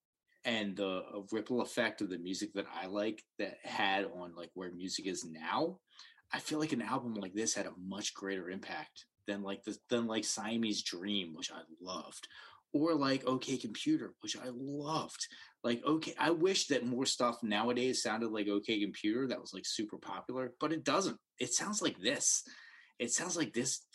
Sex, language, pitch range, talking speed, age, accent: male, English, 105-160 Hz, 190 wpm, 30-49, American